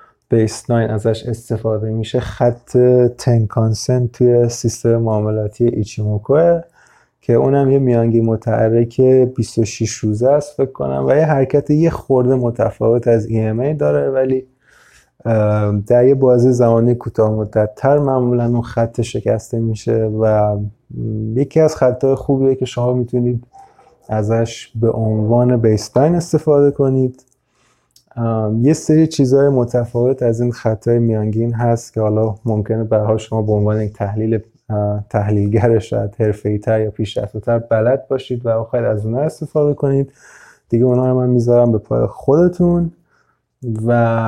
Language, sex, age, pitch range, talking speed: Persian, male, 20-39, 110-130 Hz, 140 wpm